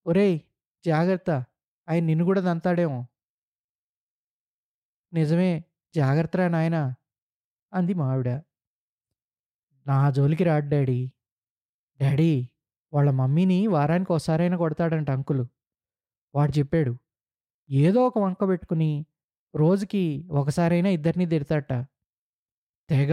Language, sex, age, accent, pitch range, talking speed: Telugu, male, 20-39, native, 125-180 Hz, 85 wpm